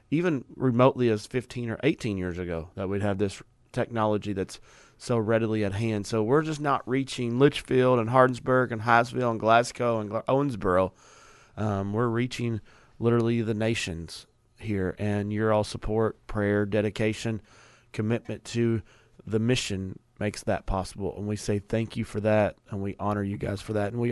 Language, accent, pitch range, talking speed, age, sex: English, American, 100-120 Hz, 170 wpm, 40-59, male